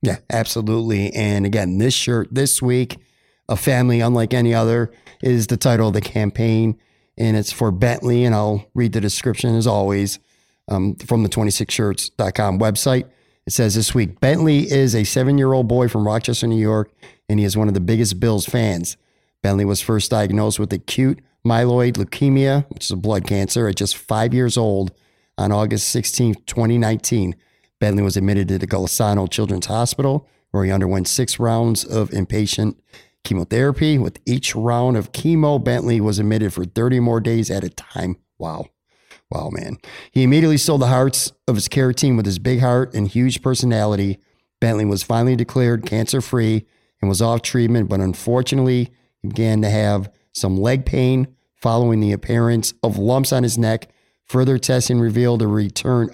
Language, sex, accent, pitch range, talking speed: English, male, American, 105-125 Hz, 170 wpm